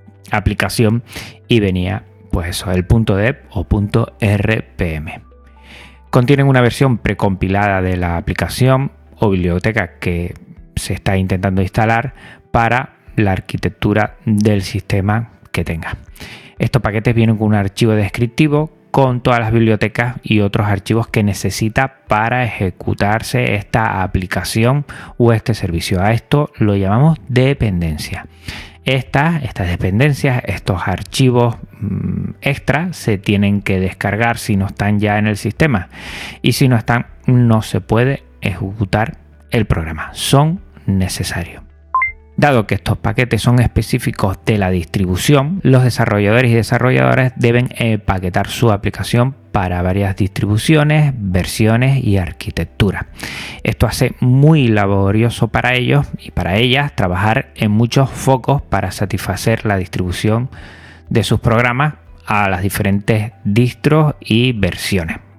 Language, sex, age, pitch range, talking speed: Spanish, male, 30-49, 95-120 Hz, 125 wpm